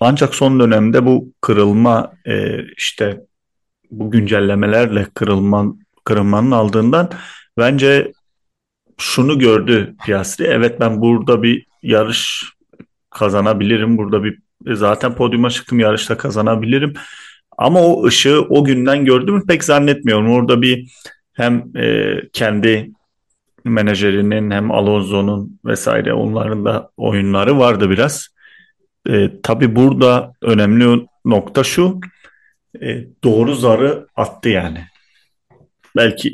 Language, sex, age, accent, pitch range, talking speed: Turkish, male, 40-59, native, 105-125 Hz, 100 wpm